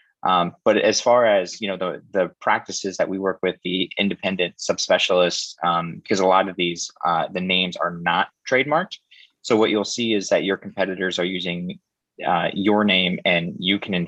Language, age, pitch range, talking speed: English, 20-39, 90-100 Hz, 195 wpm